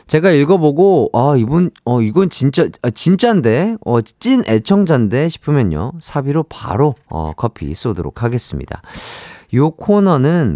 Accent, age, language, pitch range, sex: native, 40-59, Korean, 115-190 Hz, male